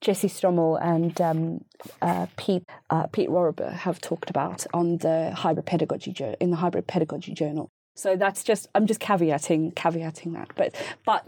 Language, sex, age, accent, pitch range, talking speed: English, female, 20-39, British, 170-190 Hz, 160 wpm